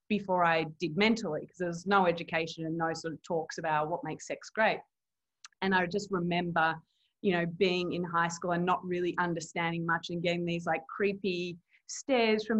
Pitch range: 165-195 Hz